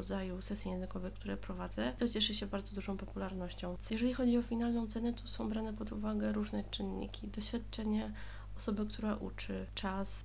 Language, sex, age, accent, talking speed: Polish, female, 20-39, native, 160 wpm